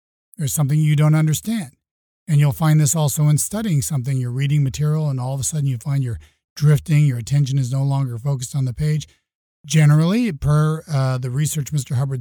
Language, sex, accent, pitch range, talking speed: English, male, American, 125-160 Hz, 200 wpm